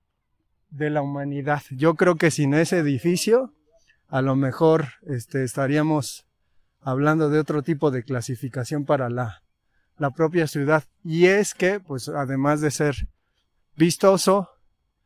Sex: male